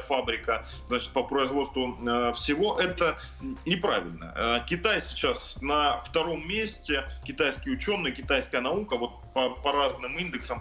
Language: Russian